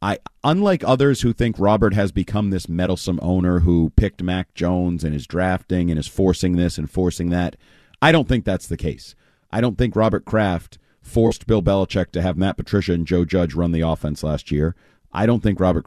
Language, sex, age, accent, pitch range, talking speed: English, male, 40-59, American, 90-110 Hz, 210 wpm